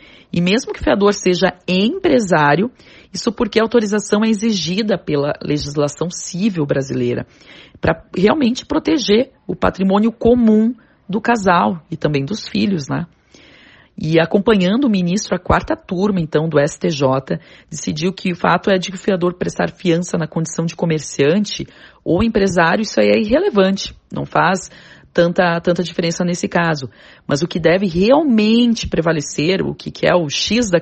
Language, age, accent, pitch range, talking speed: Portuguese, 40-59, Brazilian, 155-210 Hz, 160 wpm